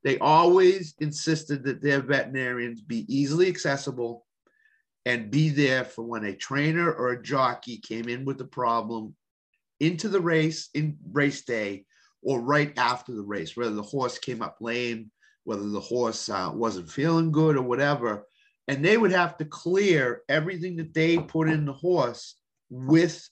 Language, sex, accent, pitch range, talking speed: English, male, American, 125-160 Hz, 165 wpm